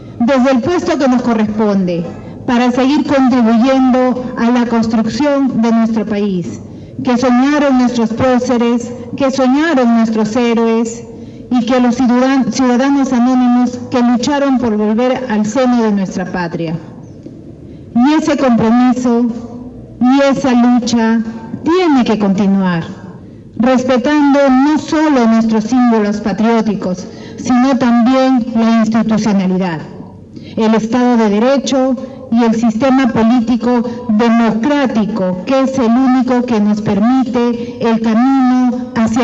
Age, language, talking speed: 40-59, Spanish, 115 wpm